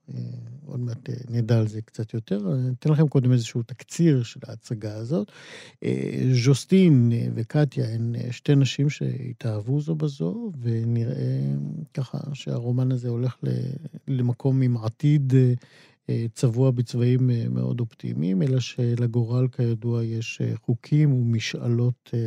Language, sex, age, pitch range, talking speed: Hebrew, male, 50-69, 115-145 Hz, 115 wpm